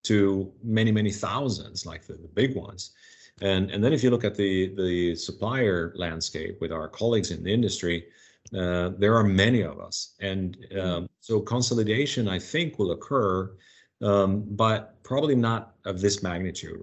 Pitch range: 90-105 Hz